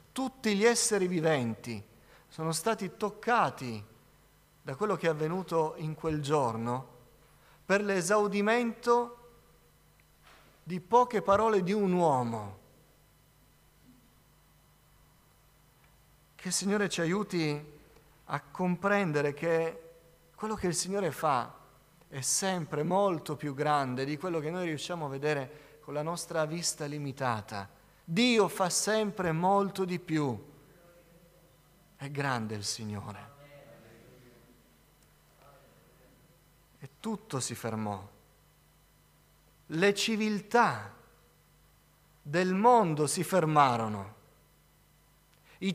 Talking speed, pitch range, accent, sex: 95 wpm, 135-200 Hz, native, male